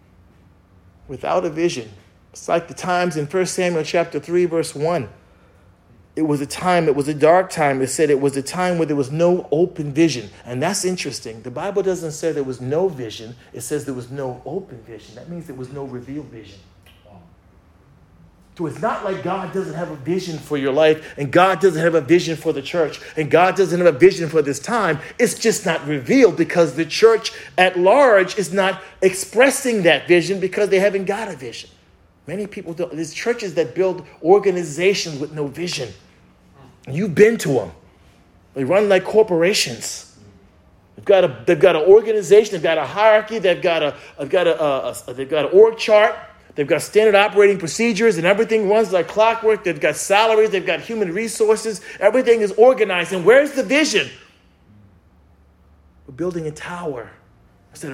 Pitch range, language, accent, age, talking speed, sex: 125-195 Hz, English, American, 40-59, 190 wpm, male